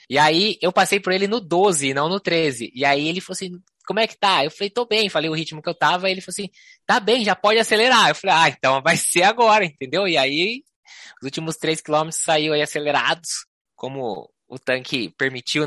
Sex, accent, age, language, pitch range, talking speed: male, Brazilian, 20-39, Portuguese, 140-185 Hz, 230 wpm